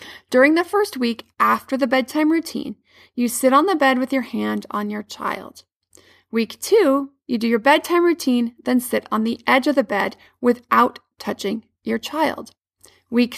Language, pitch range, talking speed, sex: English, 225-275 Hz, 175 wpm, female